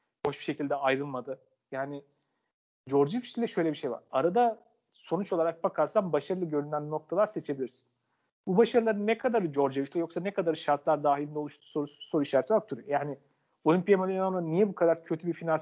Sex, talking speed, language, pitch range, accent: male, 170 wpm, Turkish, 135-165 Hz, native